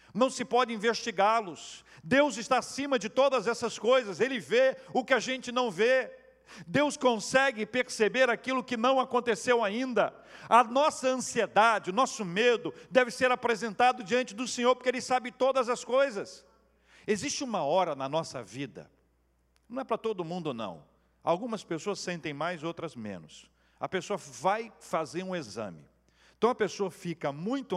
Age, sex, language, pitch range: 50-69, male, Portuguese, 155-245 Hz